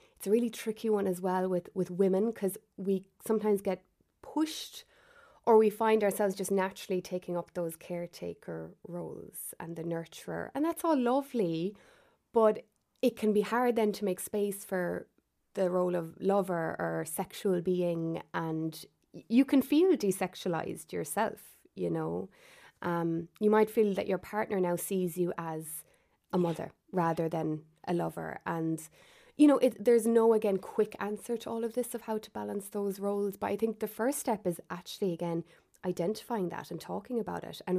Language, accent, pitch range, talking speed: English, Irish, 175-225 Hz, 175 wpm